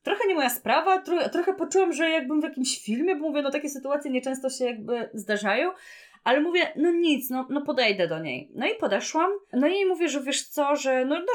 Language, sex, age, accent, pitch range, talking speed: Polish, female, 30-49, native, 205-300 Hz, 225 wpm